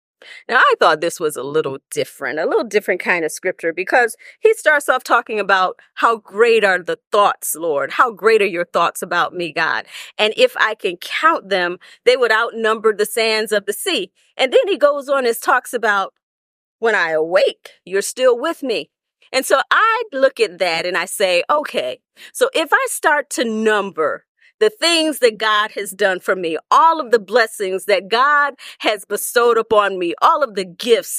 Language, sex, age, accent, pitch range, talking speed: English, female, 40-59, American, 190-305 Hz, 195 wpm